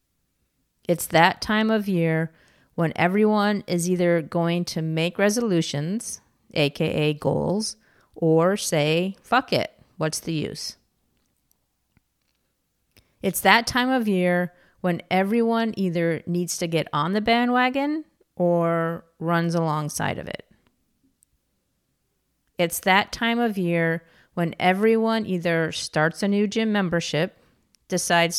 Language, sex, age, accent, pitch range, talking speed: English, female, 30-49, American, 160-200 Hz, 115 wpm